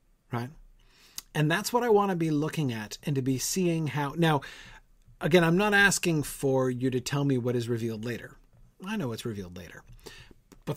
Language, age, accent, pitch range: English, 40-59, American, 130-180 Hz